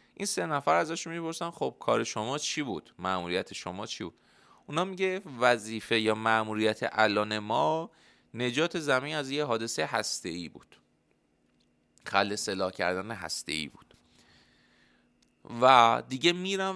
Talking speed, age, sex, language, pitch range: 130 wpm, 30-49, male, Persian, 100-150 Hz